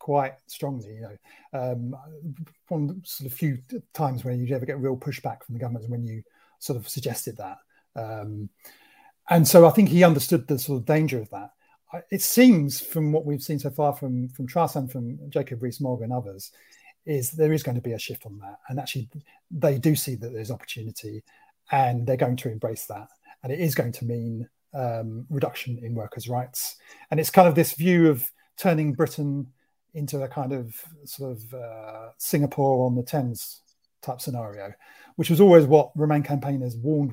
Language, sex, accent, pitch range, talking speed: English, male, British, 125-160 Hz, 195 wpm